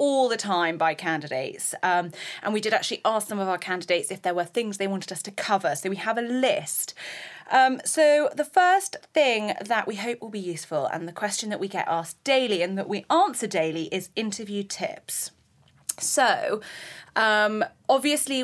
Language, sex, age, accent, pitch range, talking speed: English, female, 30-49, British, 175-220 Hz, 190 wpm